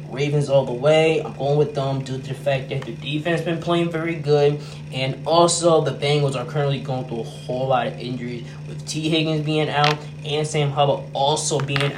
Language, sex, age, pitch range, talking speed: English, male, 10-29, 145-165 Hz, 210 wpm